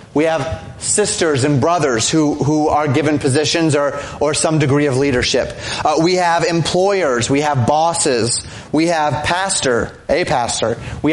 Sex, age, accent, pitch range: male, 30-49, American, 140-175 Hz